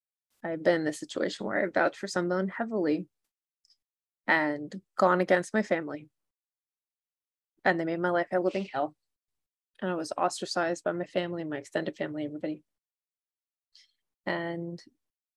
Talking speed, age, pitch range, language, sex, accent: 140 wpm, 20-39, 165-200 Hz, English, female, American